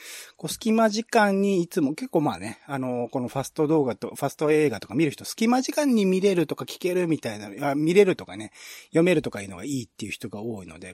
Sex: male